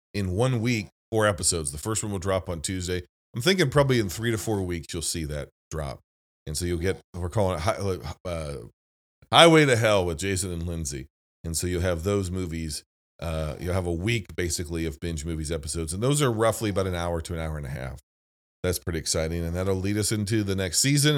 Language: English